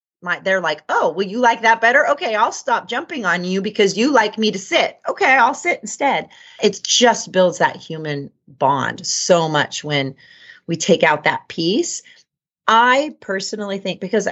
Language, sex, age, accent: English, female, 30-49, American